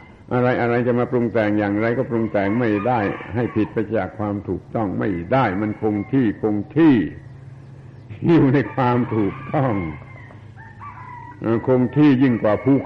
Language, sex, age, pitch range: Thai, male, 70-89, 105-130 Hz